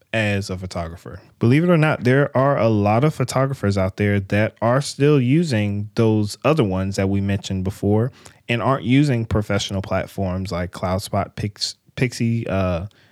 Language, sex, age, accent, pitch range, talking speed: English, male, 20-39, American, 100-125 Hz, 165 wpm